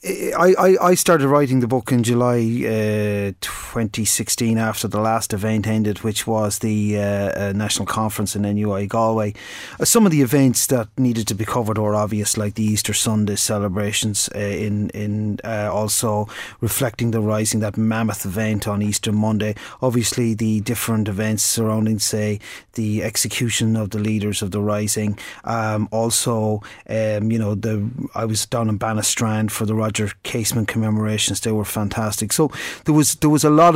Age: 30-49